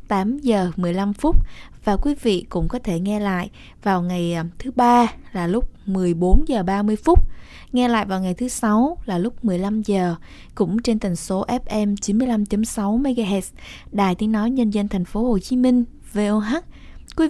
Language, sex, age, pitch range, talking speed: Vietnamese, female, 20-39, 190-230 Hz, 175 wpm